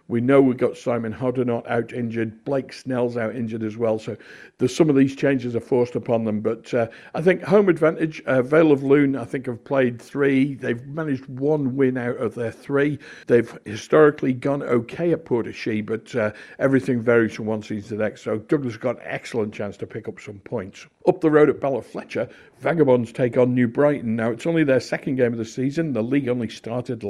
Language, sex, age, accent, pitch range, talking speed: English, male, 60-79, British, 115-135 Hz, 215 wpm